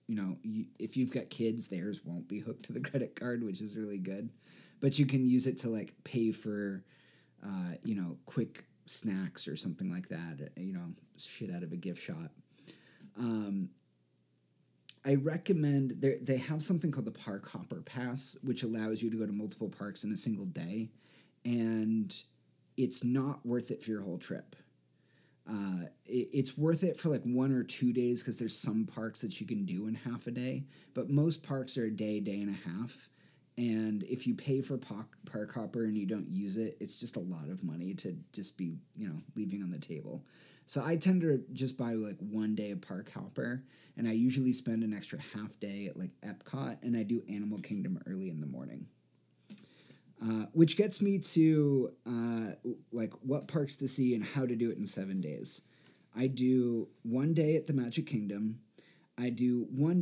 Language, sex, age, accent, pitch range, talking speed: English, male, 30-49, American, 110-135 Hz, 200 wpm